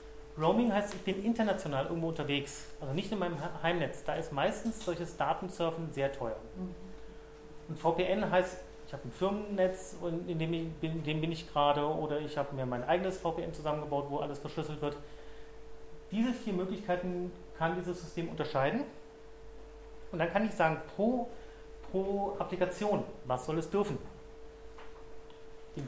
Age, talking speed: 30-49, 155 wpm